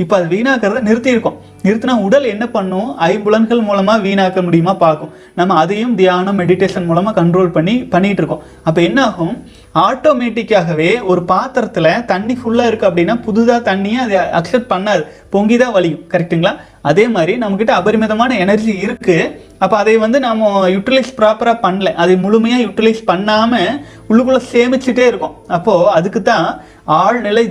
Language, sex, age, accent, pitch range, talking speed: Tamil, male, 30-49, native, 180-235 Hz, 140 wpm